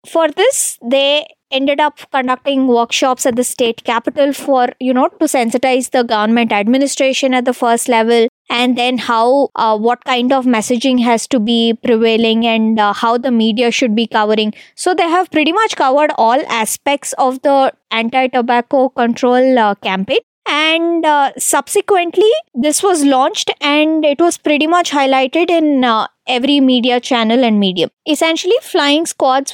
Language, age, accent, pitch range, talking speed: English, 20-39, Indian, 235-285 Hz, 160 wpm